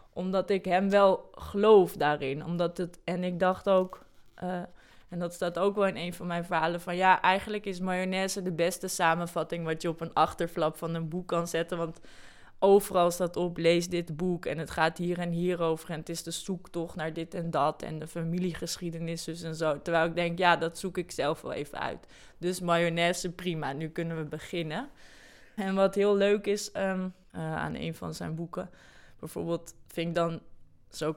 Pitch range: 165-185 Hz